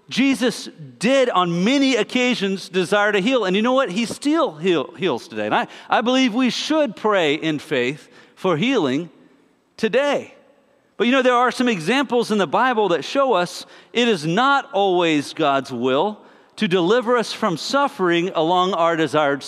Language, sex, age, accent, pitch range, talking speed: English, male, 50-69, American, 175-255 Hz, 170 wpm